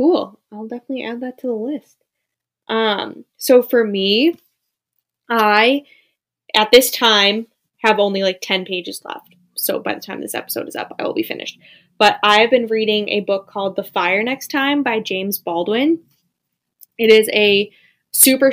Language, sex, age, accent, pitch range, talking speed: English, female, 10-29, American, 195-240 Hz, 170 wpm